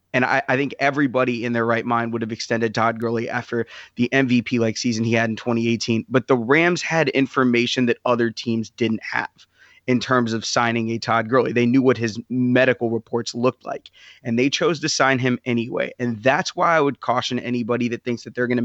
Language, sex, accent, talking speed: English, male, American, 210 wpm